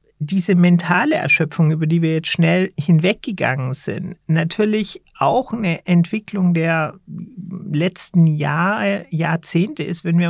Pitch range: 165-190 Hz